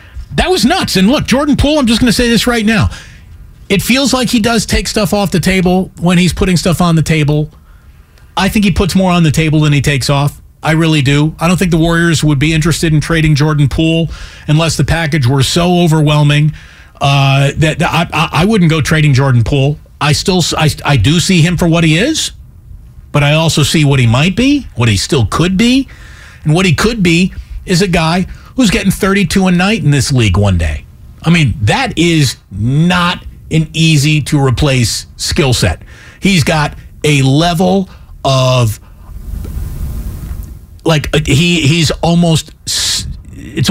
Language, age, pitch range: English, 40-59, 135-180 Hz